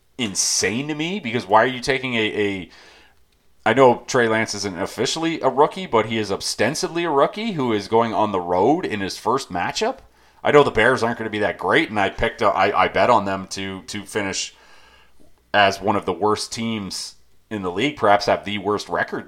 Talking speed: 220 wpm